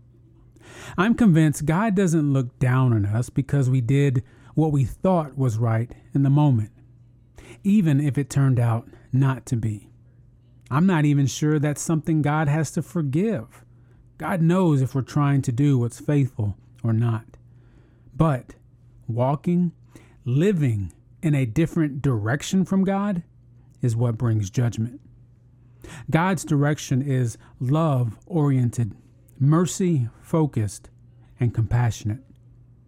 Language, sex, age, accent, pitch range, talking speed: English, male, 30-49, American, 120-150 Hz, 125 wpm